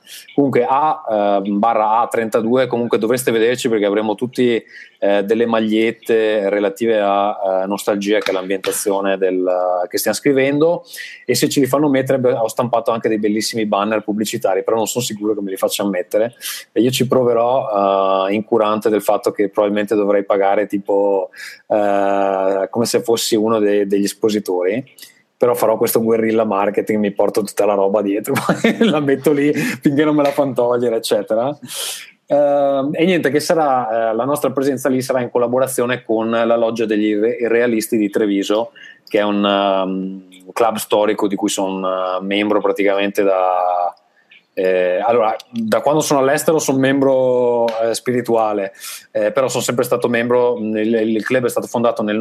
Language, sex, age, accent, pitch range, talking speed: Italian, male, 20-39, native, 100-125 Hz, 165 wpm